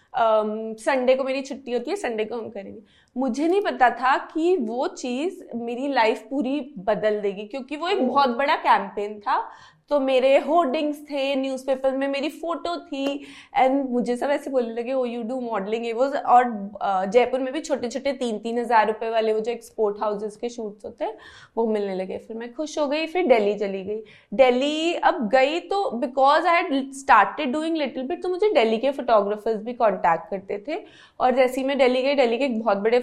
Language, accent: Hindi, native